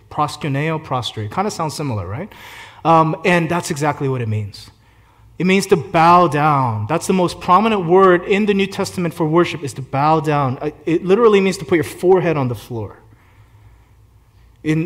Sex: male